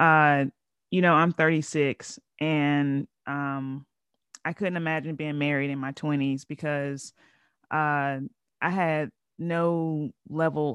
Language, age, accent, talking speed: English, 30-49, American, 115 wpm